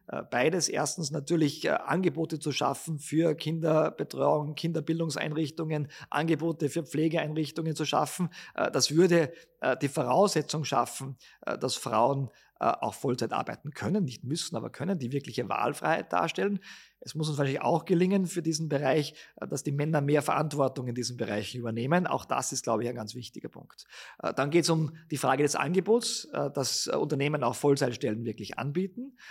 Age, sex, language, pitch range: 40-59, male, German, 140-175 Hz